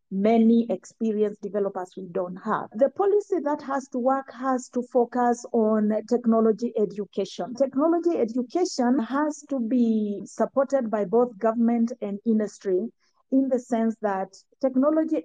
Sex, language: female, English